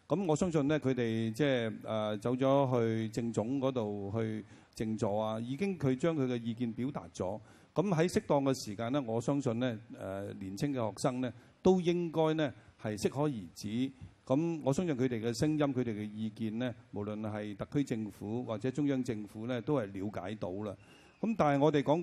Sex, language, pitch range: male, Chinese, 110-140 Hz